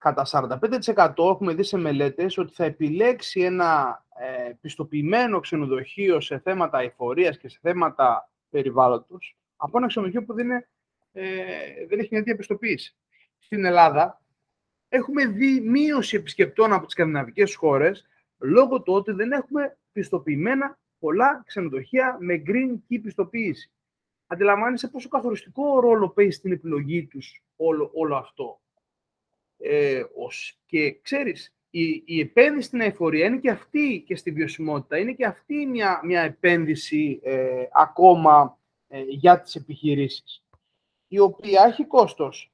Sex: male